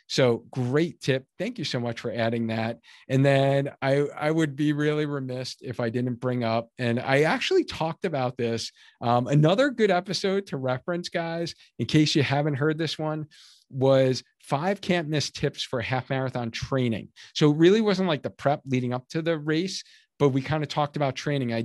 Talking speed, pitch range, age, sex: 200 wpm, 125-155 Hz, 40-59, male